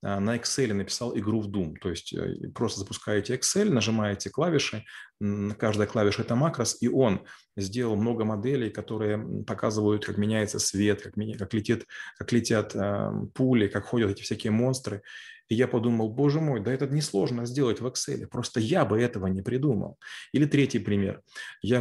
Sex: male